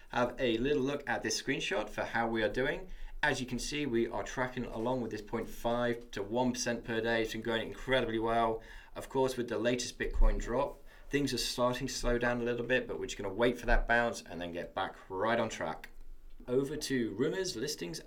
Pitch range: 115-140 Hz